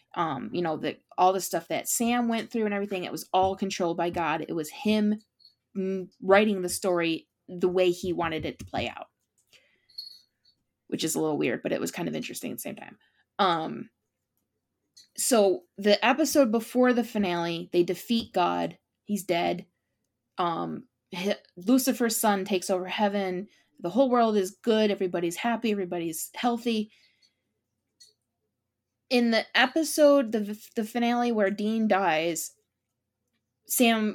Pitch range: 165-210 Hz